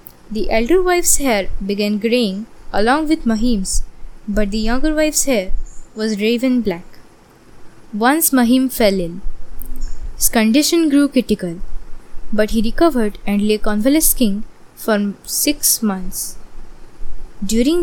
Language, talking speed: English, 120 wpm